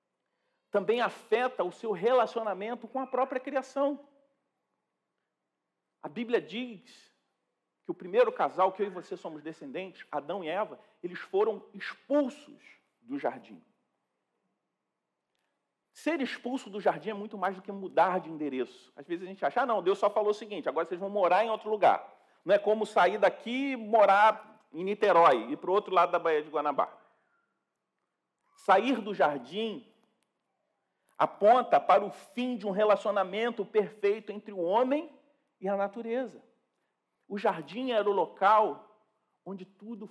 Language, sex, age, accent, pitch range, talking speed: Portuguese, male, 40-59, Brazilian, 155-230 Hz, 155 wpm